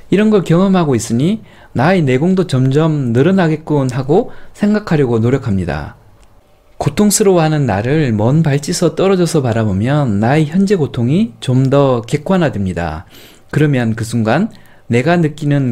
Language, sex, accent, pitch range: Korean, male, native, 115-175 Hz